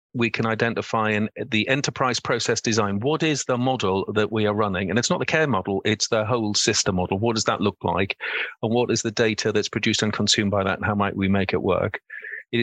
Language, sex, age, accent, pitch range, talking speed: English, male, 40-59, British, 105-125 Hz, 240 wpm